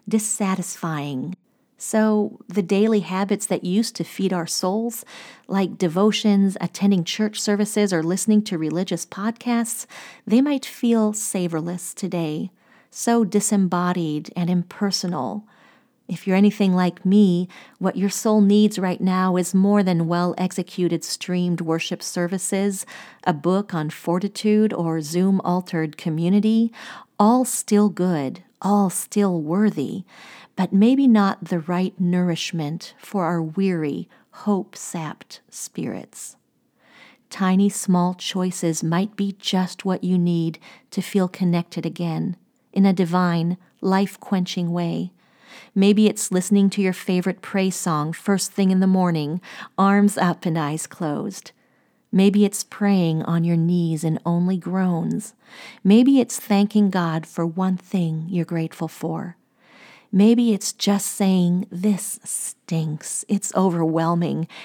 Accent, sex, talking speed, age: American, female, 125 wpm, 40-59